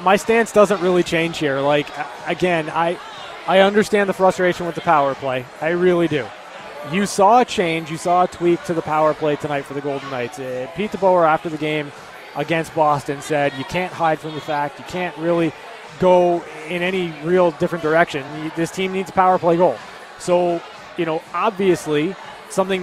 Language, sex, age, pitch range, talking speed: English, male, 20-39, 160-185 Hz, 190 wpm